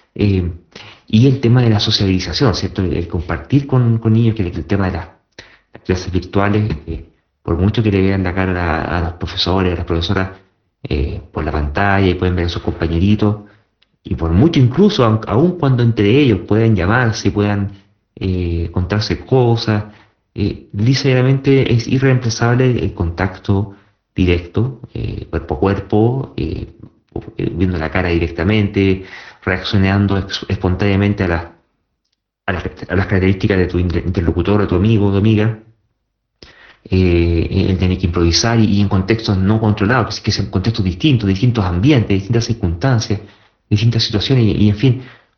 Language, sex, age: Spanish, male, 40-59